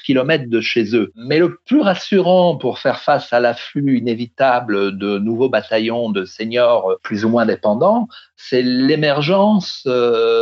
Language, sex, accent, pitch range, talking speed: French, male, French, 120-170 Hz, 150 wpm